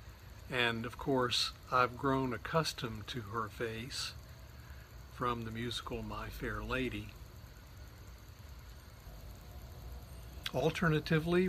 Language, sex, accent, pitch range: English, male, American, 110-140 Hz